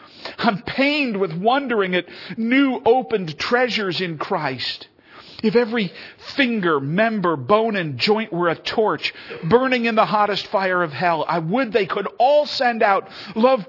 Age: 50-69